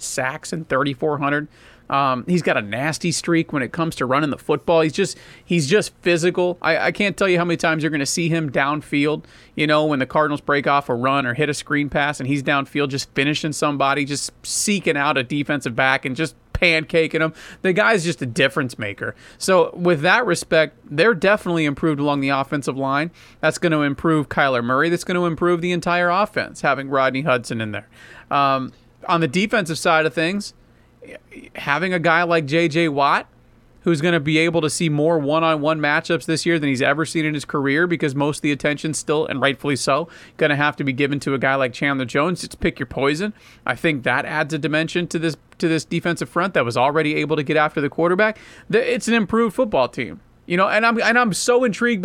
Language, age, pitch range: English, 40-59, 140-170 Hz